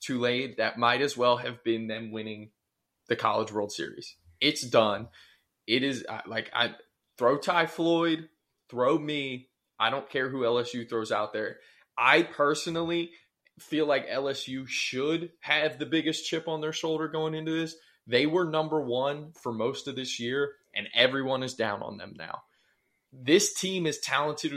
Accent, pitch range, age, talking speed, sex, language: American, 125-155 Hz, 20-39, 170 wpm, male, English